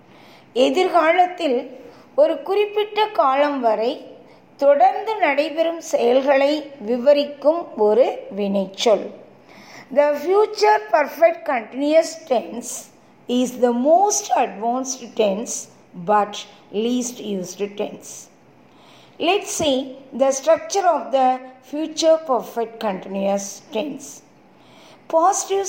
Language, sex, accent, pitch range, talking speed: Tamil, female, native, 225-330 Hz, 85 wpm